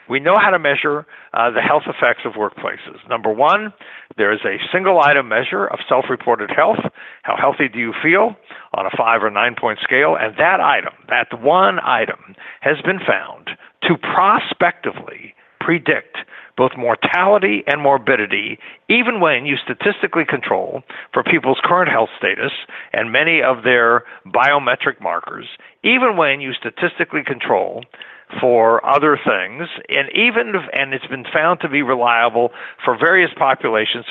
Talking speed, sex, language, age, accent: 150 wpm, male, English, 50-69, American